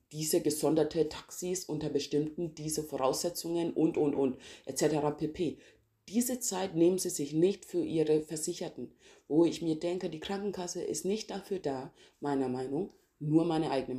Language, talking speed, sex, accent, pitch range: German, 155 wpm, female, German, 145-175 Hz